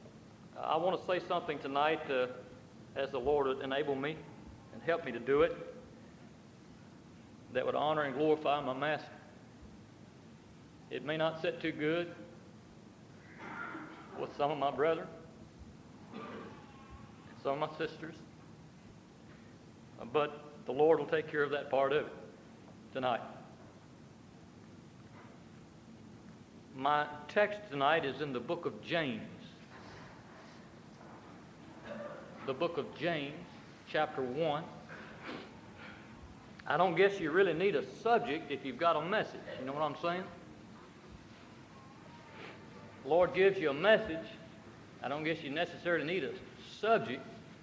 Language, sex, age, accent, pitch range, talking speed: English, male, 50-69, American, 145-175 Hz, 125 wpm